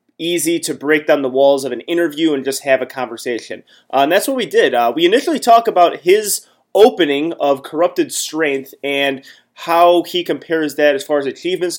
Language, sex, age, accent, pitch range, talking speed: English, male, 20-39, American, 135-170 Hz, 200 wpm